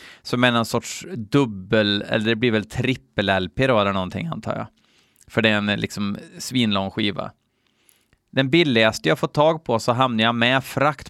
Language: Swedish